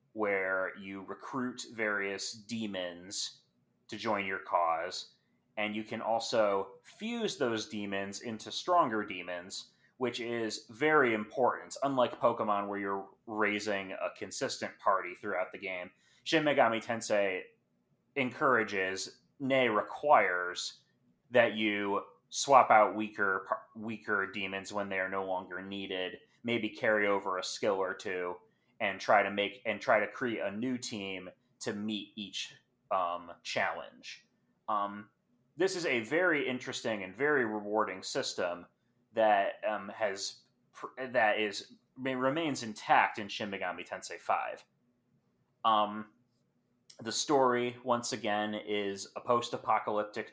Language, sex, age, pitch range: English, male, 30-49, 100-120 Hz